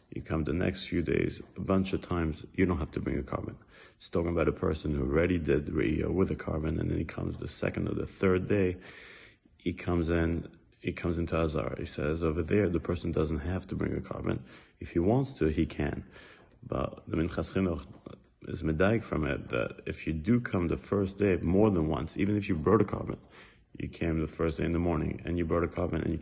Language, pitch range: English, 80-95 Hz